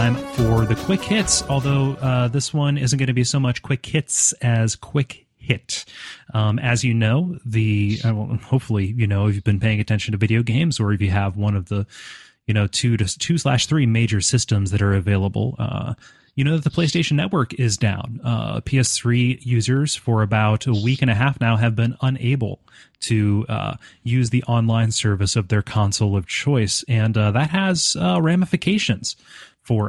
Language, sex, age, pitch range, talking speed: English, male, 30-49, 110-130 Hz, 195 wpm